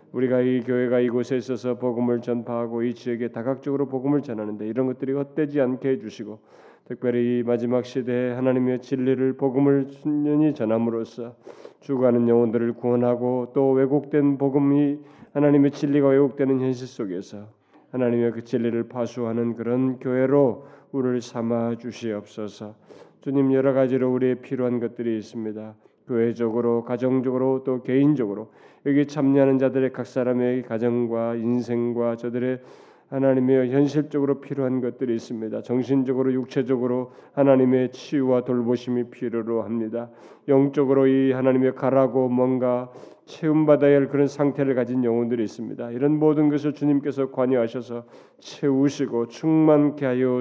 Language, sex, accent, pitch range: Korean, male, native, 120-135 Hz